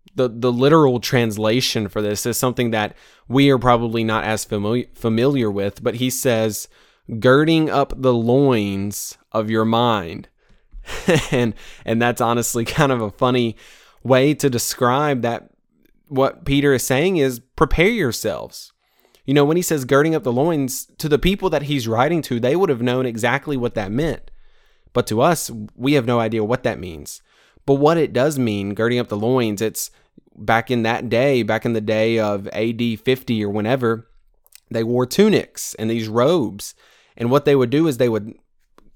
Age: 20-39